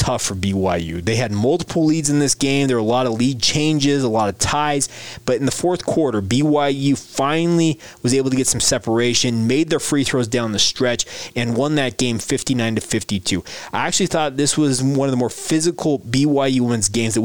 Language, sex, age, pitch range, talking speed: English, male, 20-39, 115-140 Hz, 215 wpm